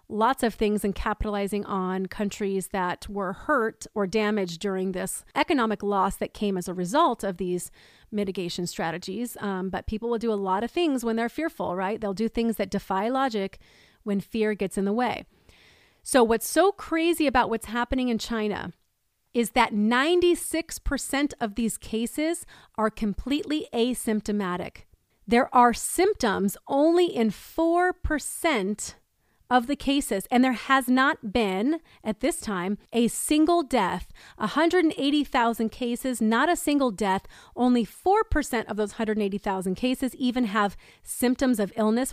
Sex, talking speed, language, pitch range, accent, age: female, 150 wpm, English, 205-280 Hz, American, 30-49